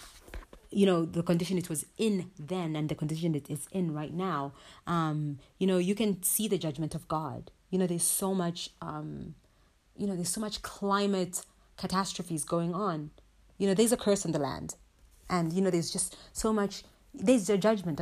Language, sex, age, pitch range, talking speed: English, female, 30-49, 155-195 Hz, 195 wpm